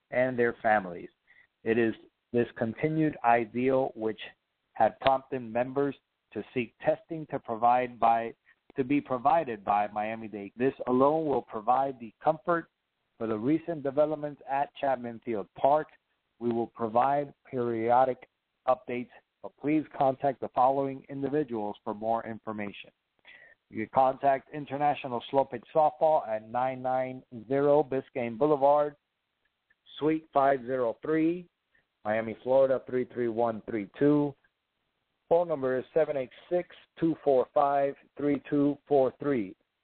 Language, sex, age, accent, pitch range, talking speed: English, male, 50-69, American, 120-145 Hz, 105 wpm